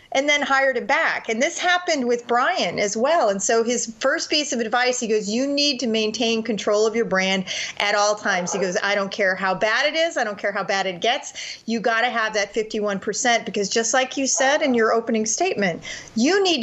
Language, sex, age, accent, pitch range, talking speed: English, female, 30-49, American, 210-260 Hz, 230 wpm